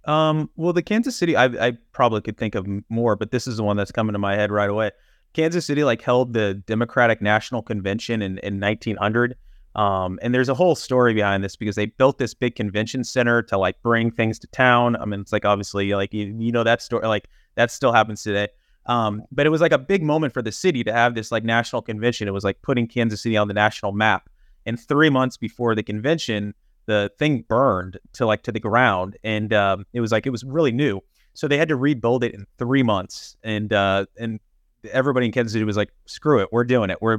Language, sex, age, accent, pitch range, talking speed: English, male, 30-49, American, 105-125 Hz, 235 wpm